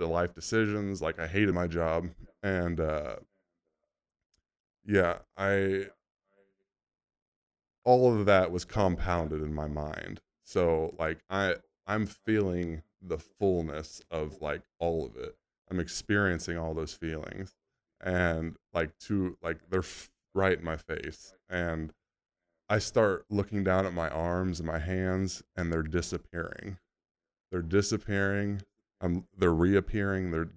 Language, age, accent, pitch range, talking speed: English, 20-39, American, 80-95 Hz, 130 wpm